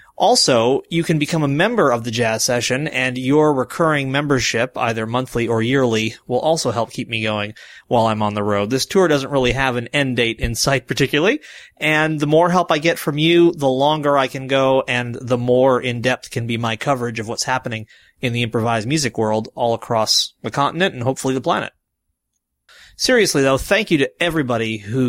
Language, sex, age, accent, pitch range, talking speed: English, male, 30-49, American, 120-160 Hz, 200 wpm